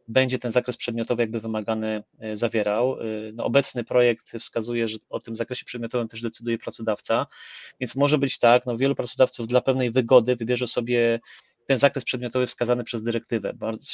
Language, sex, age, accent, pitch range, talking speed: Polish, male, 30-49, native, 115-135 Hz, 165 wpm